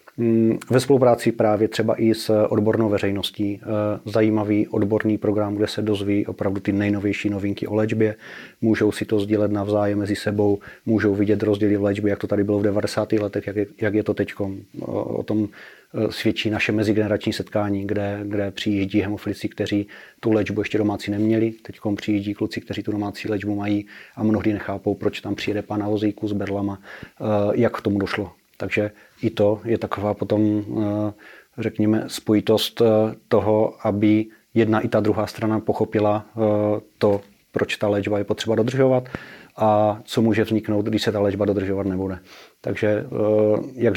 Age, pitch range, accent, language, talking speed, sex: 30-49, 105-110 Hz, native, Czech, 160 wpm, male